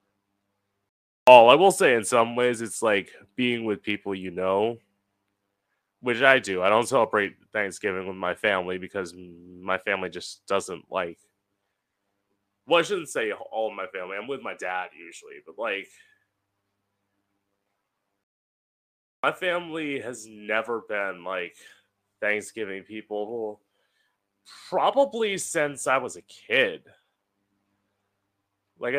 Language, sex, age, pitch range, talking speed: English, male, 20-39, 100-125 Hz, 125 wpm